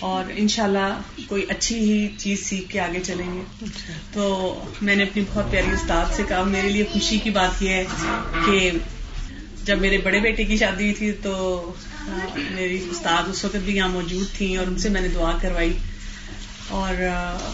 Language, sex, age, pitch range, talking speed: Urdu, female, 30-49, 180-215 Hz, 190 wpm